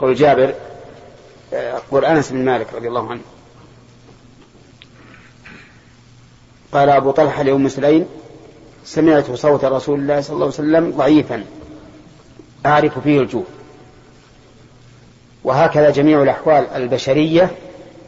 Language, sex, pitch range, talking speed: Arabic, male, 125-145 Hz, 95 wpm